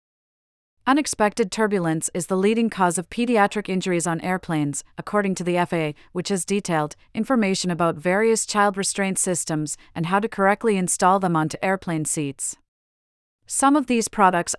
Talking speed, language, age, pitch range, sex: 150 wpm, English, 40-59, 165-210 Hz, female